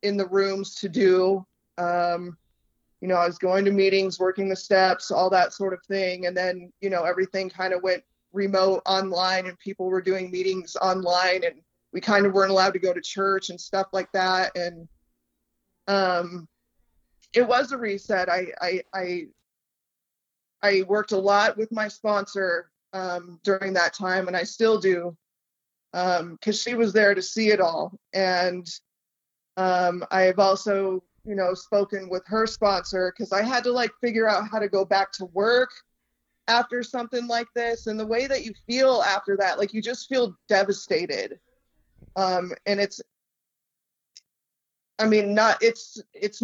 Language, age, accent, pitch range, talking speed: English, 20-39, American, 180-210 Hz, 170 wpm